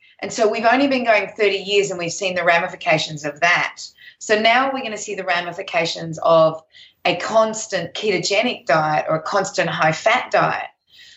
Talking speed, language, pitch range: 185 wpm, English, 175-245 Hz